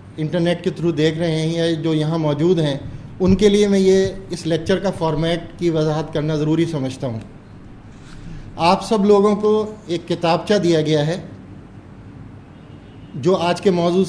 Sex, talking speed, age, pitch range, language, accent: male, 160 wpm, 30-49, 145-180 Hz, English, Indian